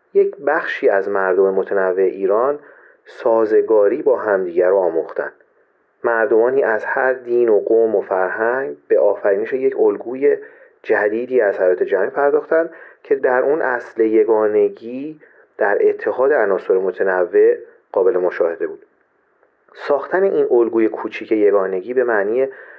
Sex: male